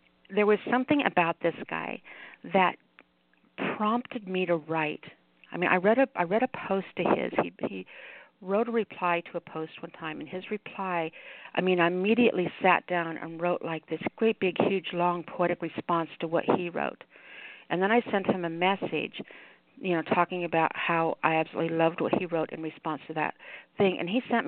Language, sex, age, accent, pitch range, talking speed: English, female, 50-69, American, 165-215 Hz, 200 wpm